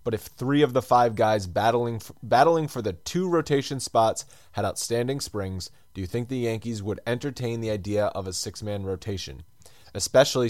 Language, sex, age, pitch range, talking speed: English, male, 20-39, 105-130 Hz, 185 wpm